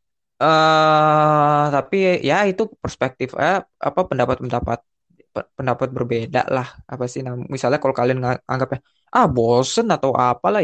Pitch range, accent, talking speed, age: 125-145 Hz, native, 130 wpm, 20-39